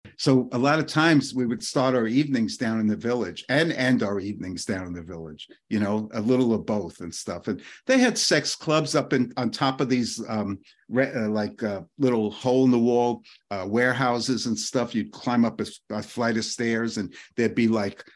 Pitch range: 110-130 Hz